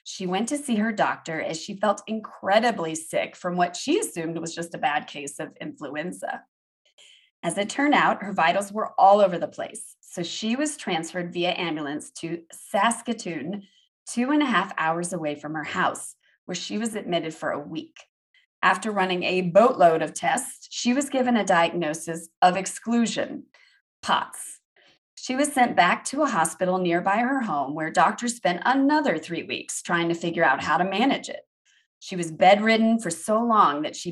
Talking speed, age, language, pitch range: 180 wpm, 30-49, English, 165-235 Hz